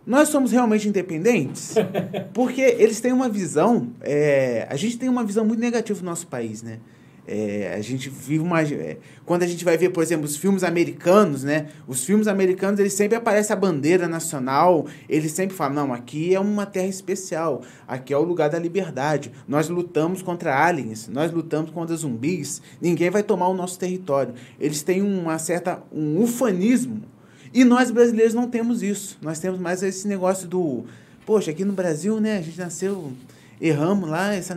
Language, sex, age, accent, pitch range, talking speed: Portuguese, male, 20-39, Brazilian, 160-235 Hz, 185 wpm